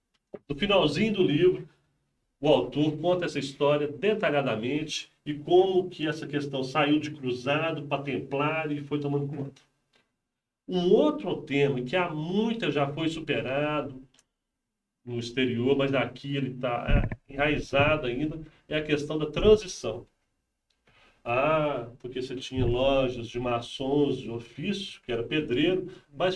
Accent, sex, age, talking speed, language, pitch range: Brazilian, male, 40-59, 135 wpm, Portuguese, 135-190 Hz